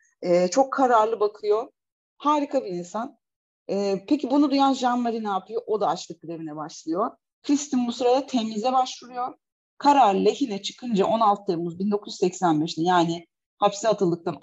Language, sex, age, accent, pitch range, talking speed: Turkish, female, 40-59, native, 170-245 Hz, 135 wpm